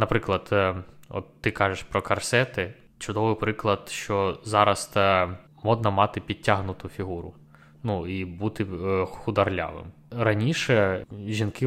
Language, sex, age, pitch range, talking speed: Ukrainian, male, 20-39, 95-115 Hz, 105 wpm